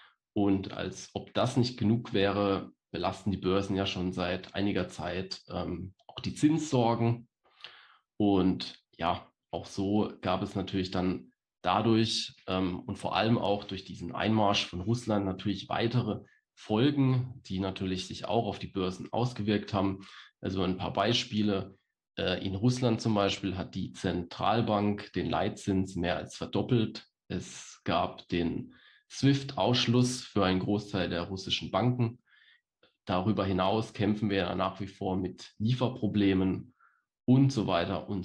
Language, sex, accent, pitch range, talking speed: German, male, German, 95-110 Hz, 140 wpm